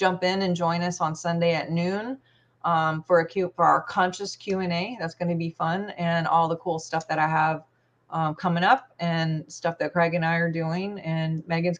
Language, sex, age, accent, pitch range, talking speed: English, female, 30-49, American, 165-190 Hz, 230 wpm